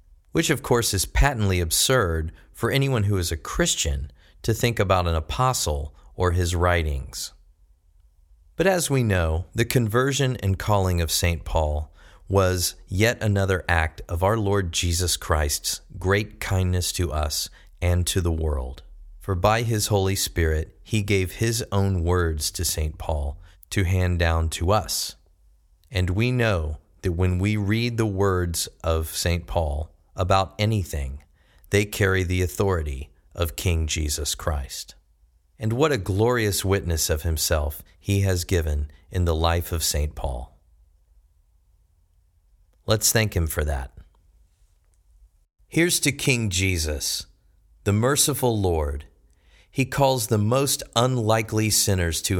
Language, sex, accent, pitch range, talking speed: English, male, American, 80-105 Hz, 140 wpm